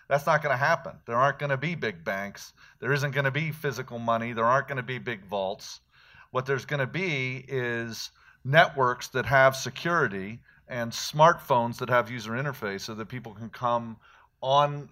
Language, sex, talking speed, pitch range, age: English, male, 195 wpm, 110-135 Hz, 40-59